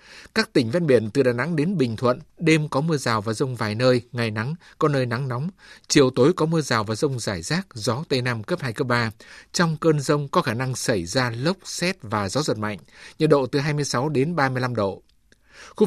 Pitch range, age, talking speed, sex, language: 120-155 Hz, 60-79, 235 wpm, male, Vietnamese